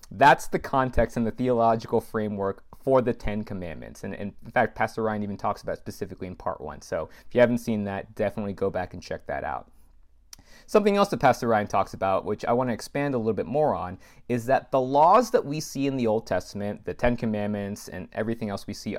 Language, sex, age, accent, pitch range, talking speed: English, male, 30-49, American, 100-140 Hz, 230 wpm